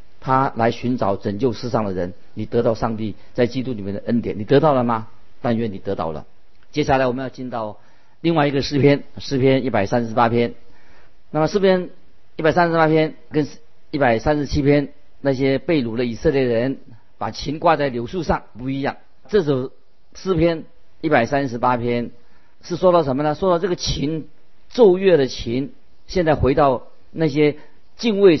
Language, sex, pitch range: Chinese, male, 120-155 Hz